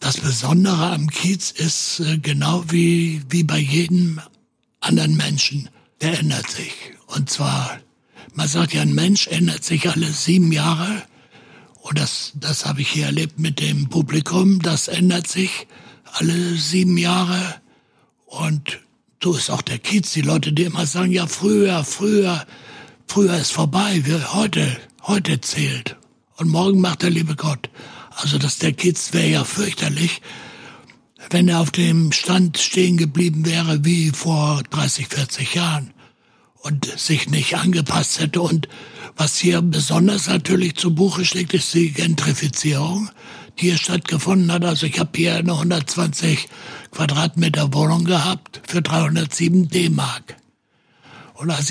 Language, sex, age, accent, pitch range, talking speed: German, male, 60-79, German, 150-180 Hz, 145 wpm